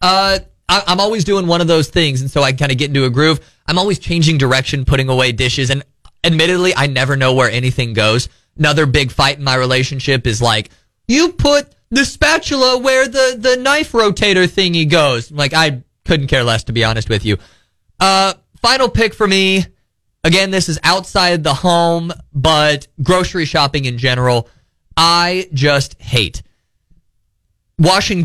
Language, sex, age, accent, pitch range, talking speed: English, male, 20-39, American, 130-170 Hz, 175 wpm